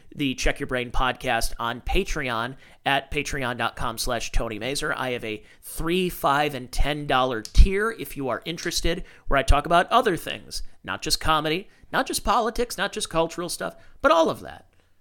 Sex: male